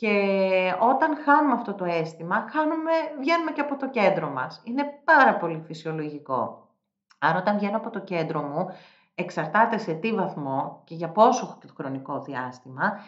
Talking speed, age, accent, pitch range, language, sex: 145 wpm, 40-59, native, 175-230 Hz, Greek, female